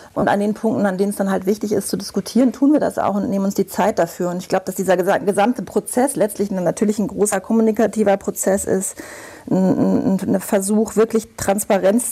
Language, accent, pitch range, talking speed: German, German, 195-225 Hz, 215 wpm